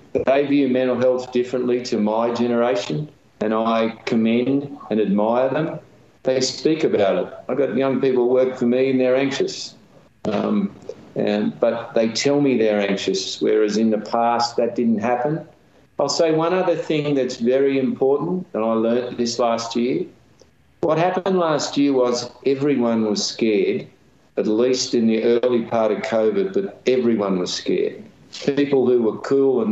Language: English